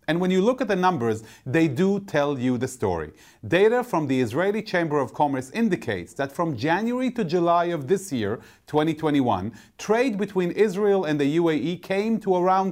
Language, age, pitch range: English, 40-59, 140-190 Hz